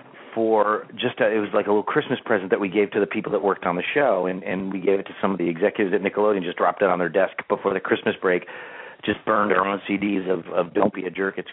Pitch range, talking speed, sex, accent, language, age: 95-110 Hz, 285 wpm, male, American, English, 40-59